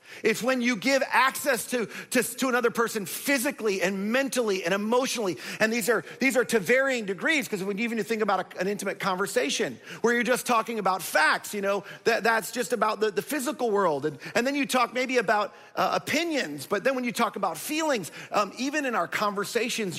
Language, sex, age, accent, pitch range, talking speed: English, male, 40-59, American, 195-250 Hz, 205 wpm